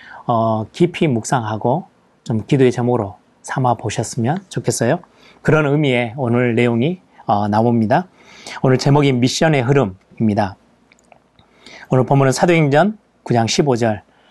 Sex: male